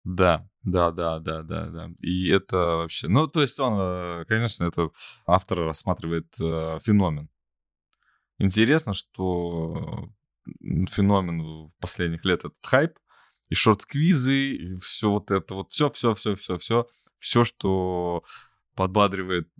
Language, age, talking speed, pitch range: Russian, 20-39, 120 wpm, 90-115 Hz